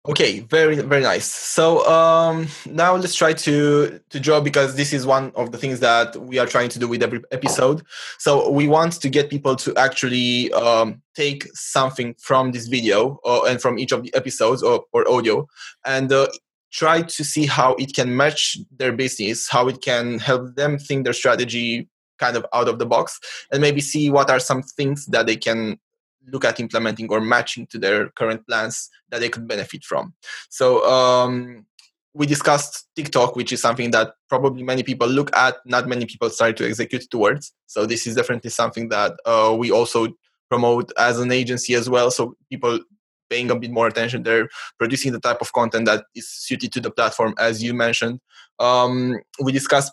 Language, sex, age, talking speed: English, male, 20-39, 195 wpm